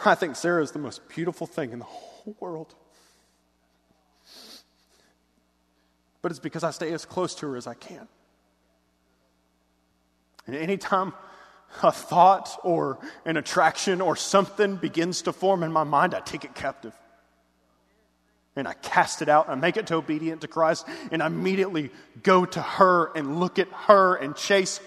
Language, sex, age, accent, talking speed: English, male, 30-49, American, 160 wpm